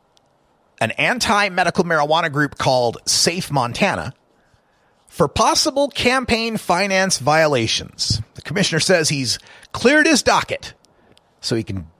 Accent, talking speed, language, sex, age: American, 110 wpm, English, male, 40-59